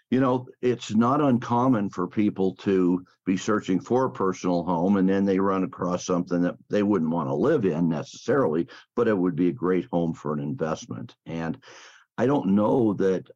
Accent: American